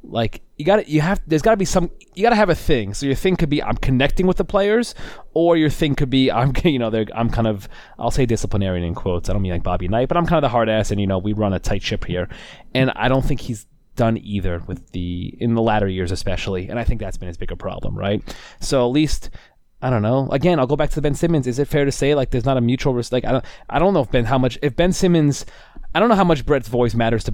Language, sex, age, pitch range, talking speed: English, male, 20-39, 95-130 Hz, 295 wpm